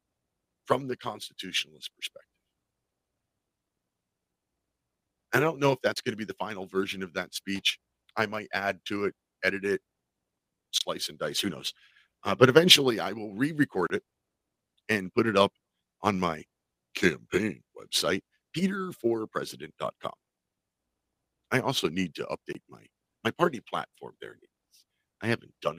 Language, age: English, 50-69